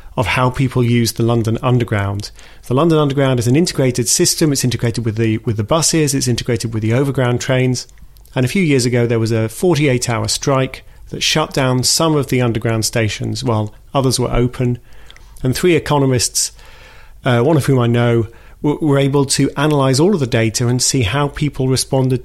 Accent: British